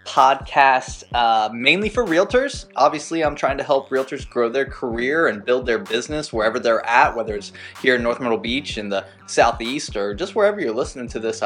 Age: 20-39